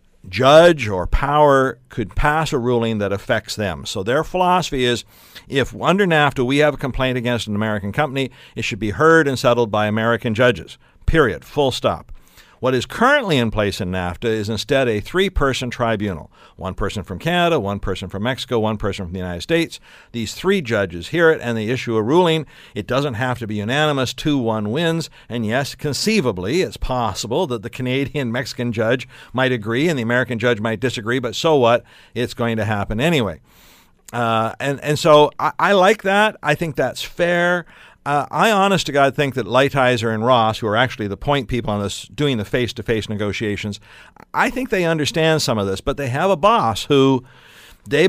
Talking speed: 195 wpm